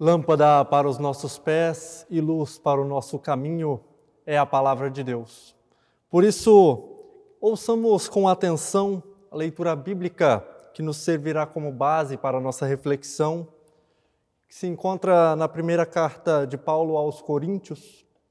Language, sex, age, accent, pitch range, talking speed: Portuguese, male, 20-39, Brazilian, 150-200 Hz, 140 wpm